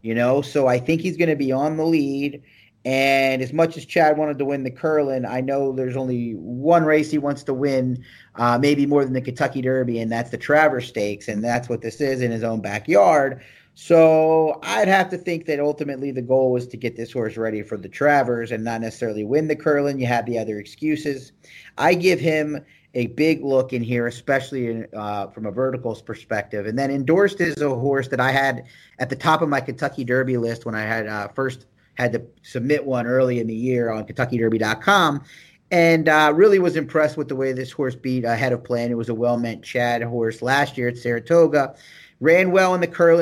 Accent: American